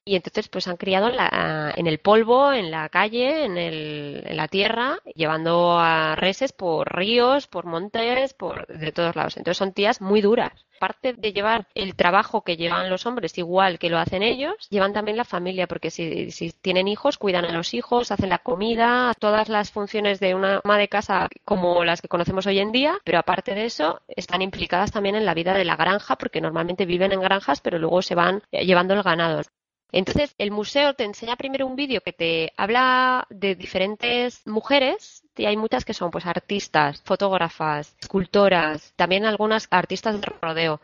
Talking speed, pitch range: 190 wpm, 175-225 Hz